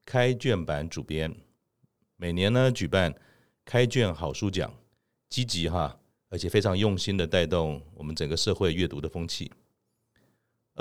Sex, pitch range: male, 85-110 Hz